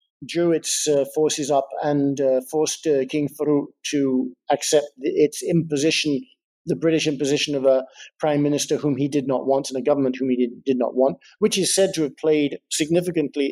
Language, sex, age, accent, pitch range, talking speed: English, male, 50-69, British, 140-165 Hz, 185 wpm